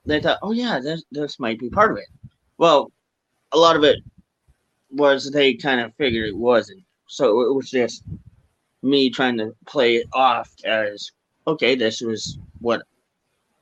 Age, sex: 30-49, male